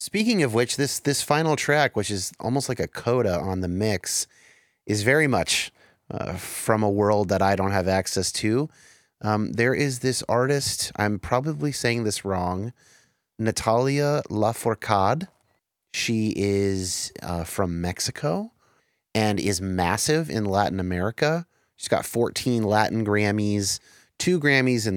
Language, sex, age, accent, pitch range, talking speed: English, male, 30-49, American, 100-125 Hz, 145 wpm